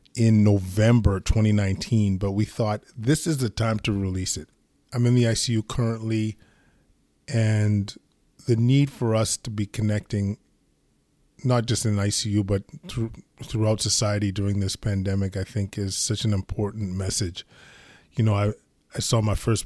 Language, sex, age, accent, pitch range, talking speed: English, male, 20-39, American, 100-115 Hz, 160 wpm